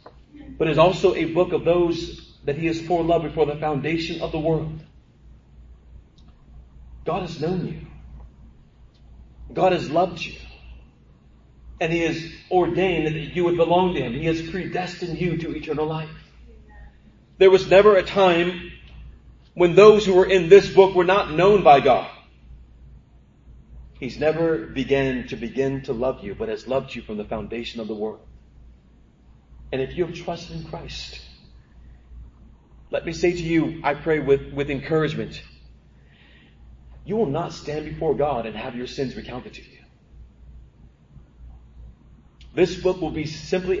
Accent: American